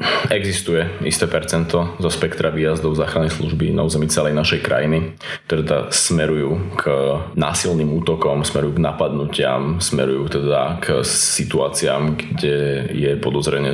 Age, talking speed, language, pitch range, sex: 20-39, 120 wpm, Slovak, 75-85 Hz, male